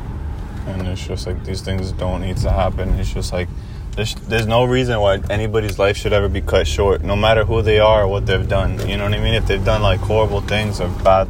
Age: 20-39